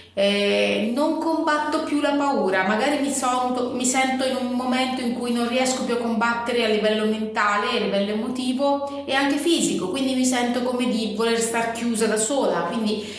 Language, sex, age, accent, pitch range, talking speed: Italian, female, 30-49, native, 200-260 Hz, 185 wpm